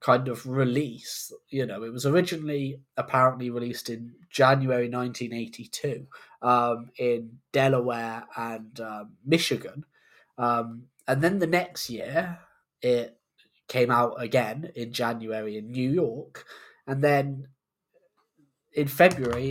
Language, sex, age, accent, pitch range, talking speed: English, male, 10-29, British, 120-145 Hz, 115 wpm